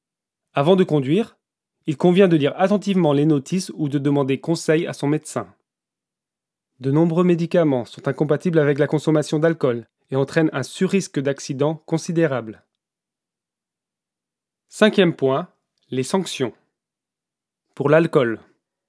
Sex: male